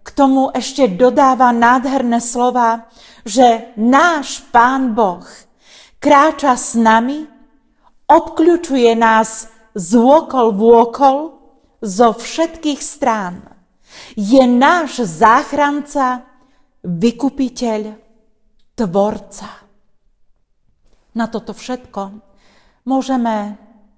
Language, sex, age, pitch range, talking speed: Slovak, female, 50-69, 220-275 Hz, 80 wpm